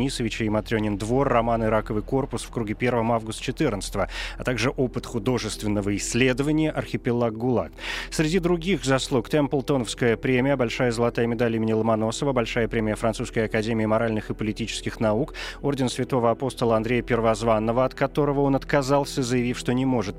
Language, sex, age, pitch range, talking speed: Russian, male, 30-49, 110-135 Hz, 150 wpm